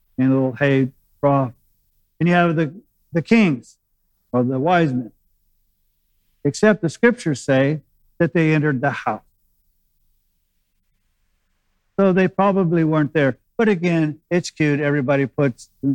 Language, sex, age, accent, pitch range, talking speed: English, male, 50-69, American, 125-155 Hz, 130 wpm